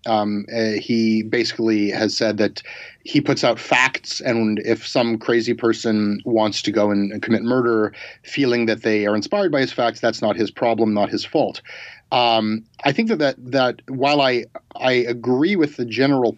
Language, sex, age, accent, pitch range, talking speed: English, male, 30-49, American, 110-135 Hz, 185 wpm